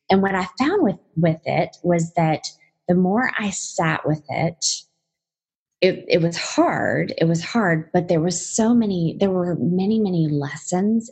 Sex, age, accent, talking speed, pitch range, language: female, 20-39, American, 175 wpm, 160-215 Hz, English